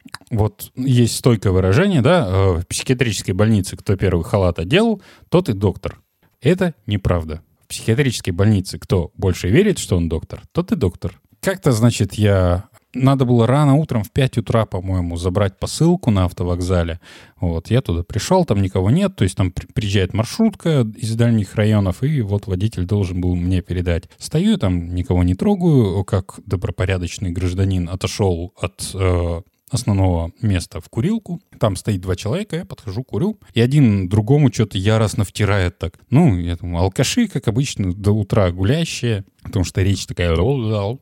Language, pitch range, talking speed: Russian, 90-120 Hz, 155 wpm